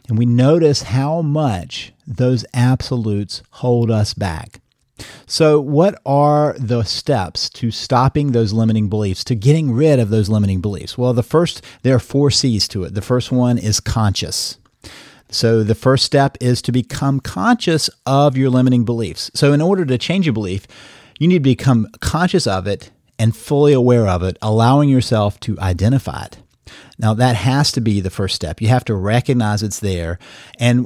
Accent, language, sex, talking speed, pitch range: American, English, male, 180 wpm, 110-135 Hz